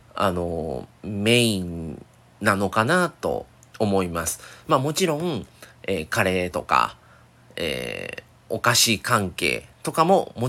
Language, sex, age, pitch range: Japanese, male, 40-59, 95-150 Hz